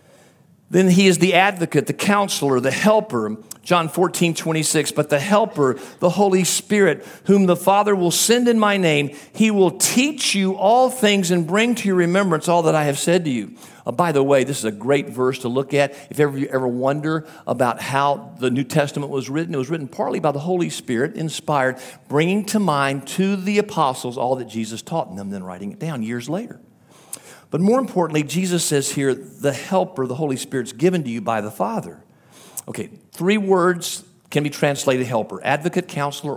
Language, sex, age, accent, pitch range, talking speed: English, male, 50-69, American, 135-180 Hz, 200 wpm